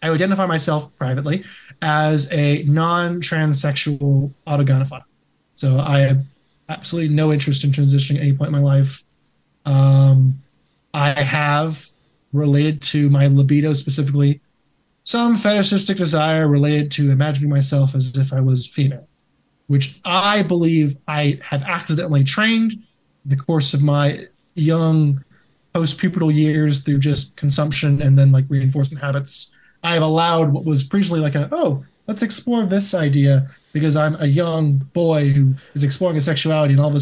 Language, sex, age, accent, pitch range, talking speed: English, male, 20-39, American, 140-165 Hz, 150 wpm